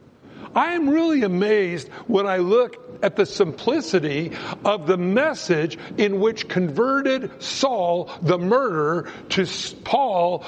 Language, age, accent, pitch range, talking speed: English, 60-79, American, 185-260 Hz, 120 wpm